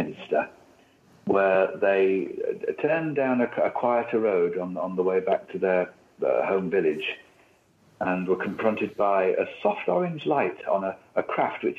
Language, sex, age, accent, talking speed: English, male, 60-79, British, 165 wpm